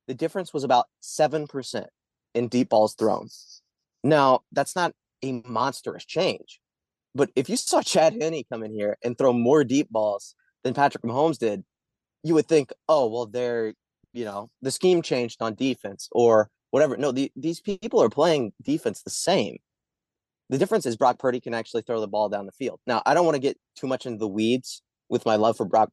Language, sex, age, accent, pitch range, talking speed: English, male, 20-39, American, 115-155 Hz, 195 wpm